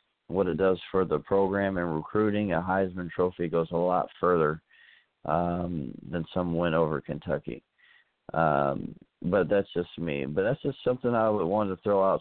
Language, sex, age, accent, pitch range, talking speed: English, male, 40-59, American, 90-110 Hz, 170 wpm